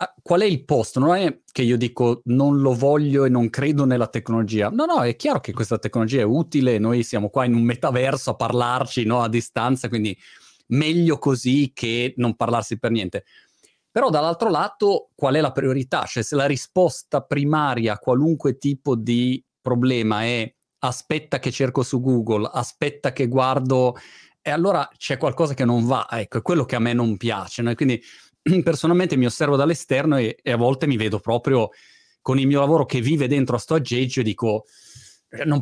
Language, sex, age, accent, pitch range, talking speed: Italian, male, 30-49, native, 120-140 Hz, 190 wpm